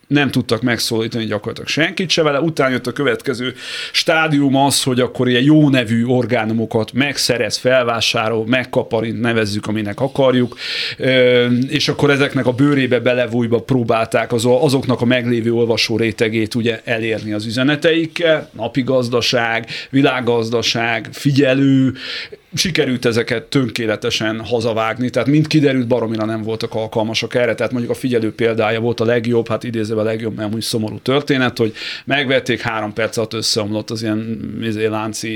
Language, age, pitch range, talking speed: Hungarian, 30-49, 110-130 Hz, 135 wpm